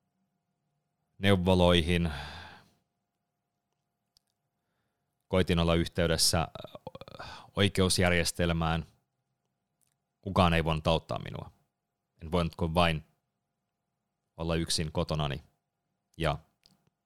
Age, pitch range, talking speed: 30-49, 80-100 Hz, 65 wpm